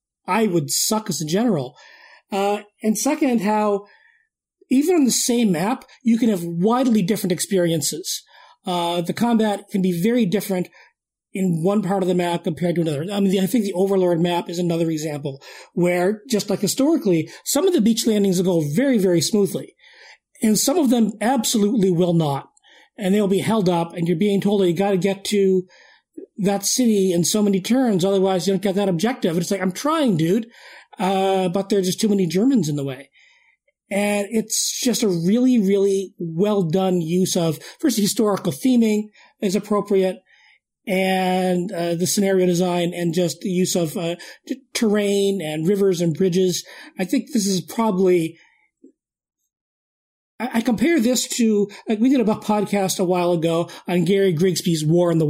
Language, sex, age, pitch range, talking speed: English, male, 40-59, 180-225 Hz, 185 wpm